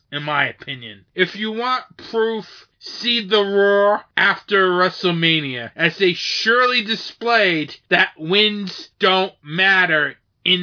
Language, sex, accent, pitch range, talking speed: English, male, American, 185-240 Hz, 120 wpm